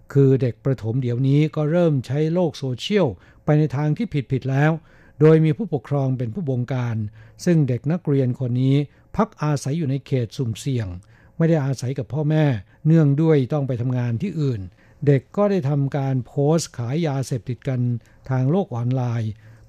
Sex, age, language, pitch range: male, 60-79, Thai, 125-155 Hz